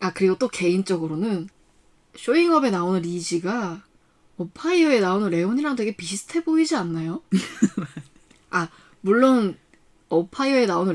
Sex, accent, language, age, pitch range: female, native, Korean, 20-39, 190-280 Hz